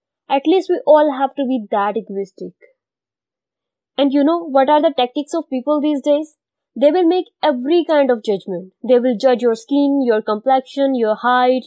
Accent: Indian